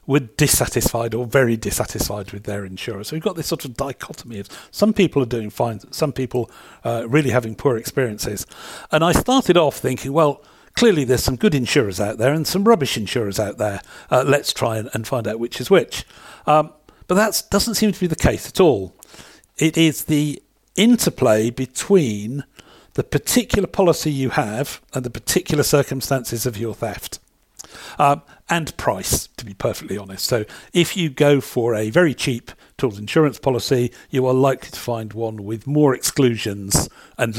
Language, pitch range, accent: English, 115-155 Hz, British